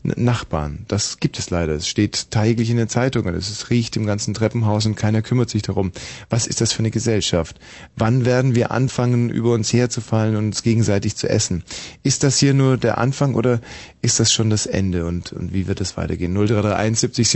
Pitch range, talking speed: 100-125 Hz, 205 wpm